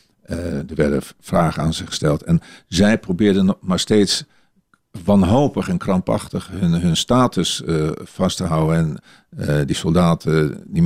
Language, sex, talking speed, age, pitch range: Dutch, male, 150 wpm, 50-69, 80-105 Hz